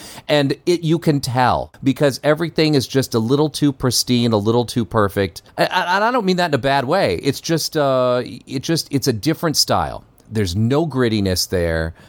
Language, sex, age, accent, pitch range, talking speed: English, male, 40-59, American, 95-130 Hz, 205 wpm